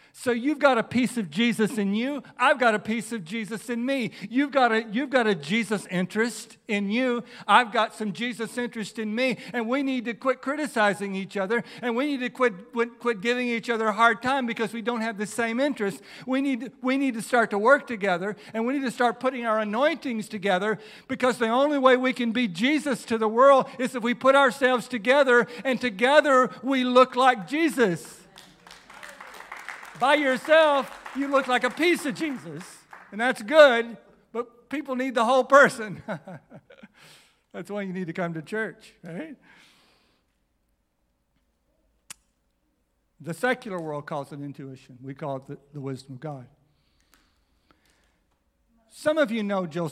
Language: English